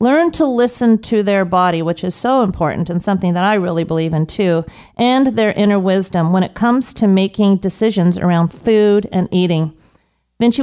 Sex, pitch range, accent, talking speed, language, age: female, 180-220 Hz, American, 185 wpm, English, 40-59